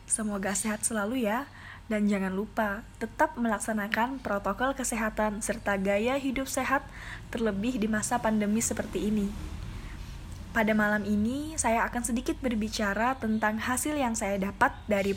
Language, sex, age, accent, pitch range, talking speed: Indonesian, female, 10-29, native, 210-250 Hz, 135 wpm